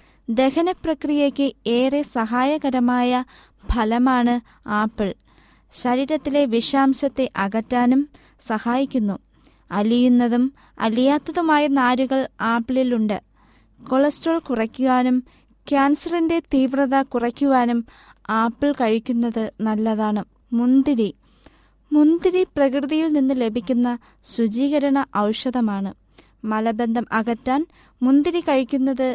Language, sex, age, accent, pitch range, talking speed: Malayalam, female, 20-39, native, 235-275 Hz, 70 wpm